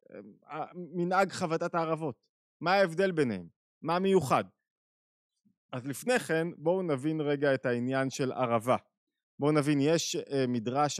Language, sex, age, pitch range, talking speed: Hebrew, male, 20-39, 130-175 Hz, 120 wpm